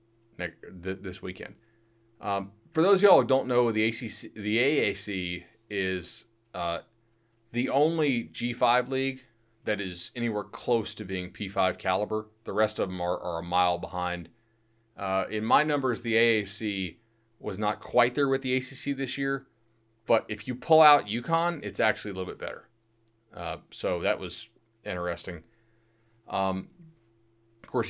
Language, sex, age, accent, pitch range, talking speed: English, male, 30-49, American, 95-120 Hz, 155 wpm